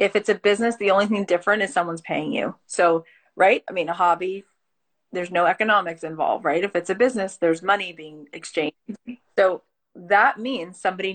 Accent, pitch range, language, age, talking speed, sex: American, 175-230 Hz, English, 30-49, 190 wpm, female